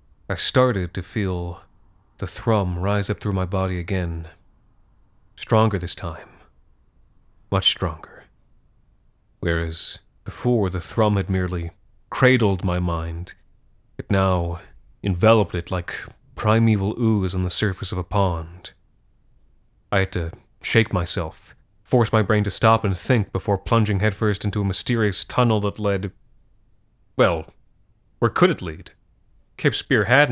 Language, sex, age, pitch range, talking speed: English, male, 30-49, 95-110 Hz, 135 wpm